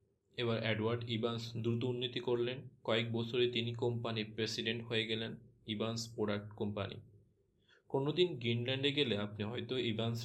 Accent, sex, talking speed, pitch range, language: native, male, 130 wpm, 105-120 Hz, Bengali